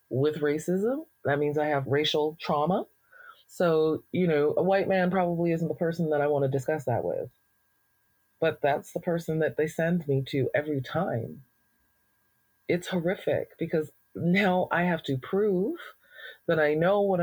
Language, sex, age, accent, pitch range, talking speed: English, female, 30-49, American, 155-195 Hz, 165 wpm